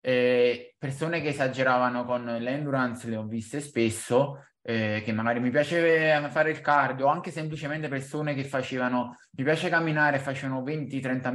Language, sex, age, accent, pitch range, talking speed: Italian, male, 20-39, native, 120-145 Hz, 155 wpm